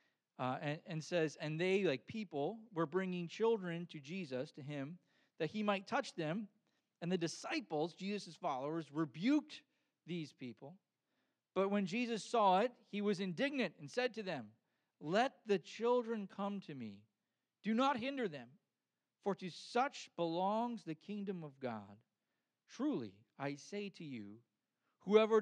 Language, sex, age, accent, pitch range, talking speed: English, male, 40-59, American, 140-220 Hz, 150 wpm